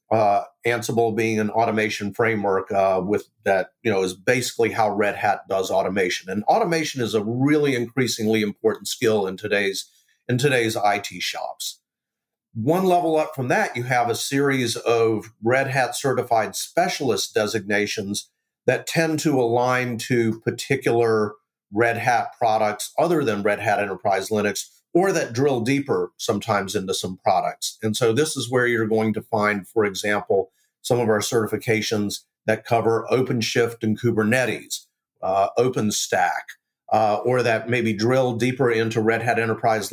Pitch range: 110-125 Hz